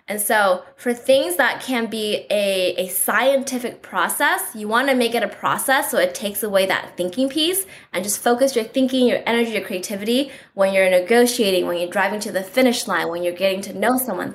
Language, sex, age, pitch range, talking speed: English, female, 10-29, 185-245 Hz, 210 wpm